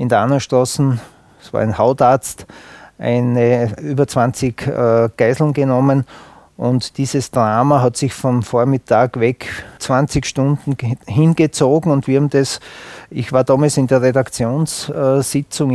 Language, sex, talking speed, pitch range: German, male, 120 wpm, 115-135 Hz